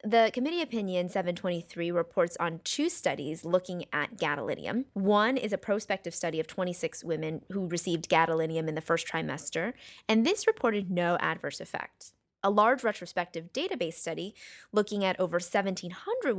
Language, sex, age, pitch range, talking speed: English, female, 20-39, 170-220 Hz, 150 wpm